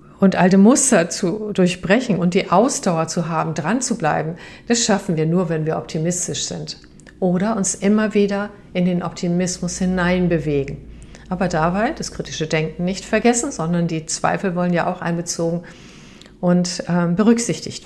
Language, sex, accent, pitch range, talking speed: German, female, German, 165-195 Hz, 155 wpm